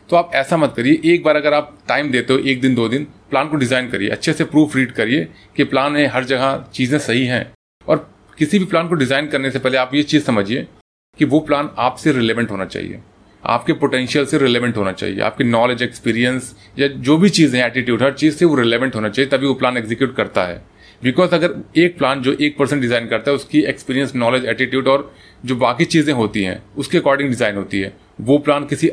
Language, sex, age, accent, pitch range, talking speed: Hindi, male, 30-49, native, 120-150 Hz, 225 wpm